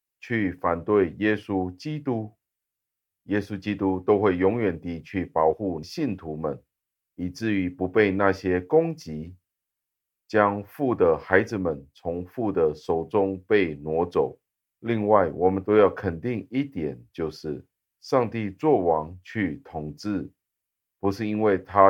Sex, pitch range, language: male, 85-105 Hz, Chinese